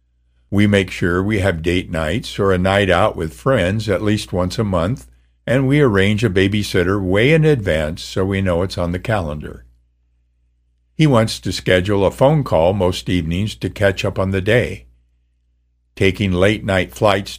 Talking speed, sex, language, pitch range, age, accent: 180 wpm, male, English, 80-110 Hz, 60-79, American